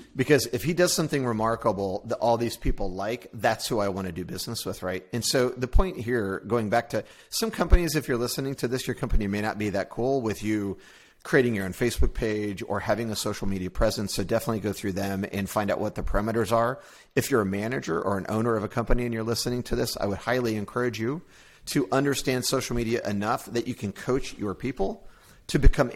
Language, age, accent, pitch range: English, 40-59, American, 105-135 Hz